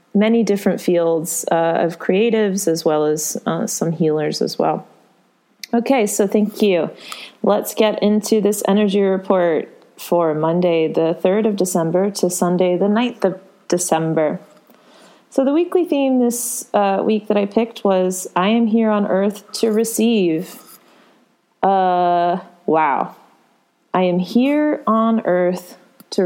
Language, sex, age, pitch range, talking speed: English, female, 30-49, 165-210 Hz, 140 wpm